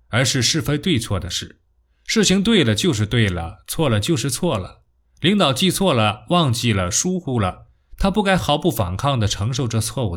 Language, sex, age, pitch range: Chinese, male, 20-39, 100-155 Hz